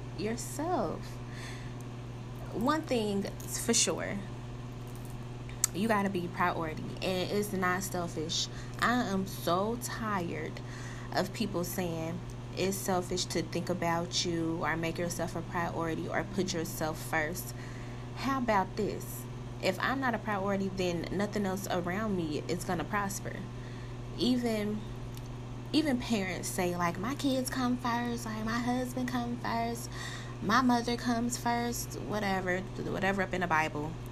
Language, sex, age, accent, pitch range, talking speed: English, female, 20-39, American, 120-190 Hz, 135 wpm